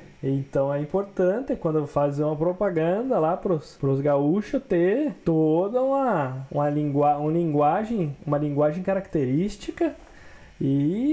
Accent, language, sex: Brazilian, Portuguese, male